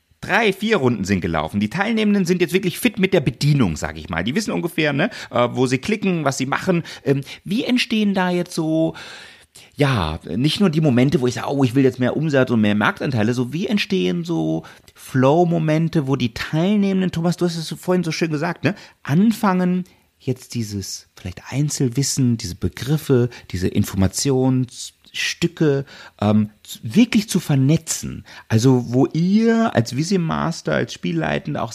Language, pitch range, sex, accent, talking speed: English, 105-165 Hz, male, German, 170 wpm